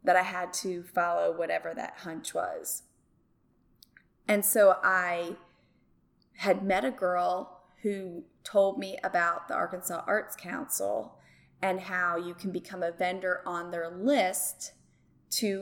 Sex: female